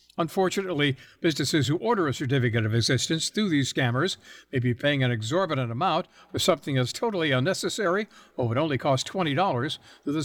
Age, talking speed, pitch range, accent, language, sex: 60-79, 170 wpm, 130-180 Hz, American, English, male